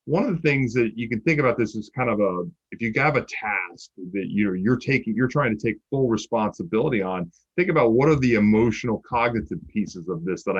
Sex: male